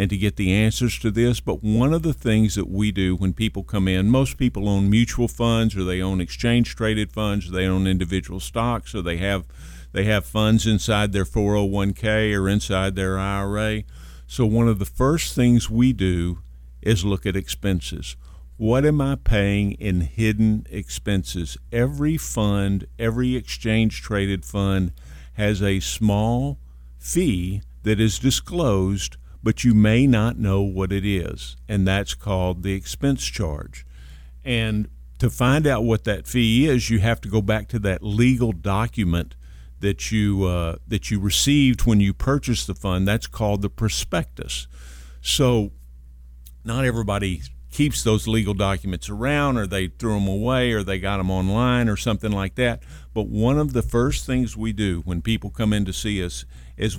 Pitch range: 95-115 Hz